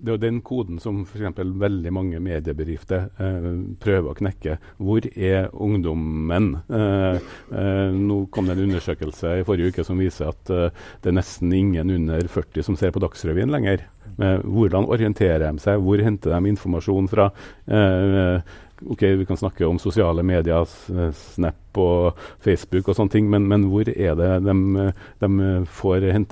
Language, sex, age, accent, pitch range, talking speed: English, male, 50-69, Norwegian, 85-100 Hz, 175 wpm